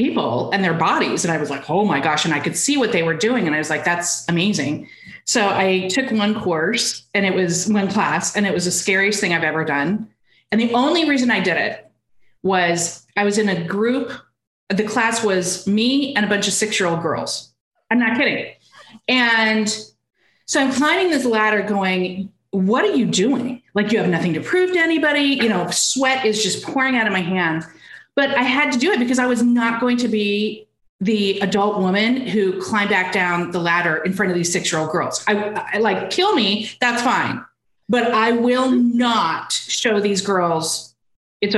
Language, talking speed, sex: English, 210 wpm, female